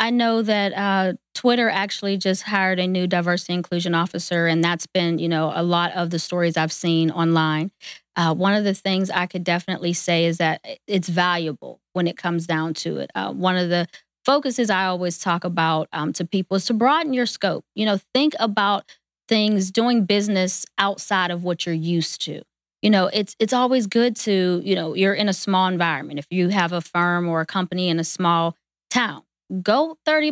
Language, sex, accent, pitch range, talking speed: English, female, American, 170-200 Hz, 205 wpm